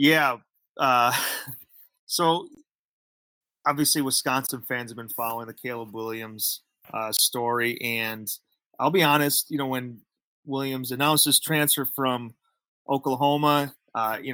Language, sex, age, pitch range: English, male, 30-49, 110-130 Hz